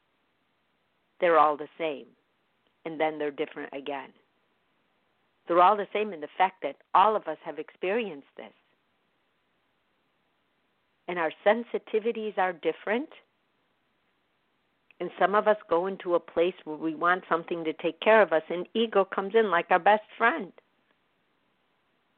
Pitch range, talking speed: 155-205 Hz, 145 wpm